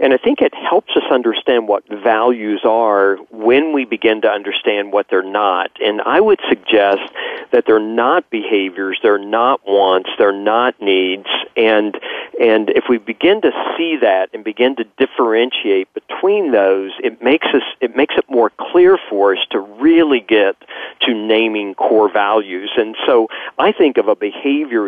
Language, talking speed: English, 170 wpm